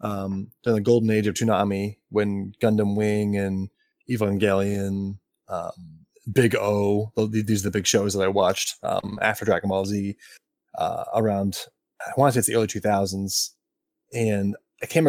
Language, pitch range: English, 100-125 Hz